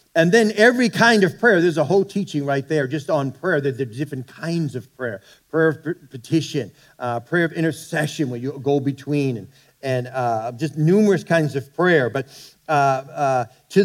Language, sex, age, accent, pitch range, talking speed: English, male, 50-69, American, 140-190 Hz, 190 wpm